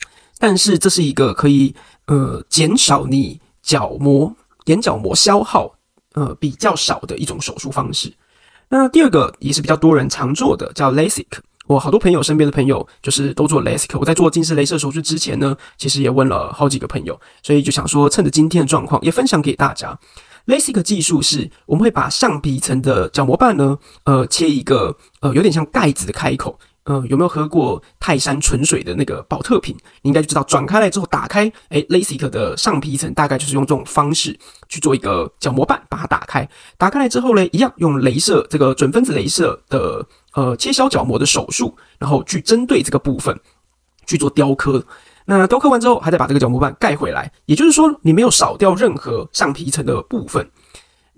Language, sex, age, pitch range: Chinese, male, 20-39, 140-180 Hz